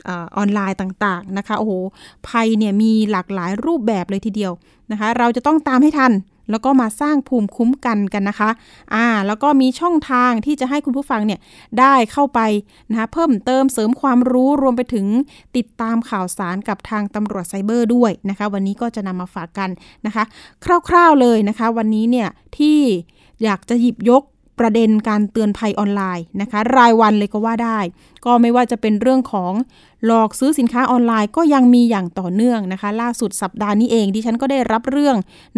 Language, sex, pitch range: Thai, female, 205-250 Hz